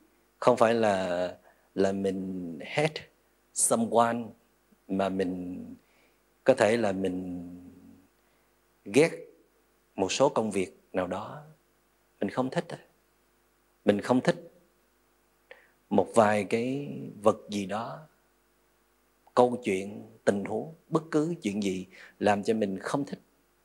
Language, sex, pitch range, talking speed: Vietnamese, male, 95-120 Hz, 115 wpm